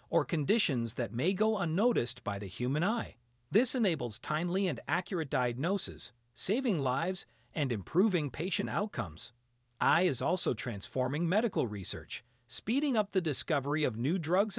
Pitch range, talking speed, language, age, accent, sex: 120-185 Hz, 145 wpm, Italian, 40-59, American, male